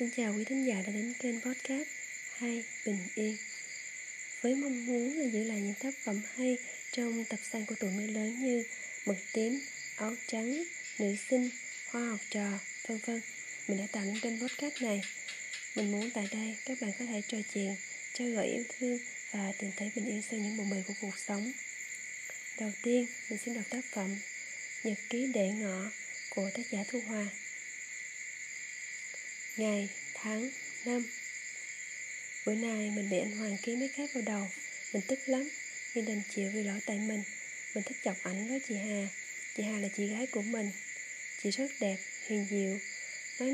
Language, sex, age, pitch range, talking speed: Vietnamese, female, 20-39, 205-245 Hz, 185 wpm